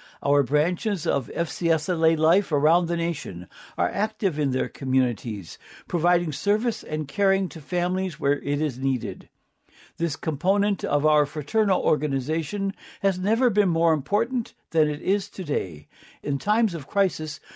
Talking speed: 145 wpm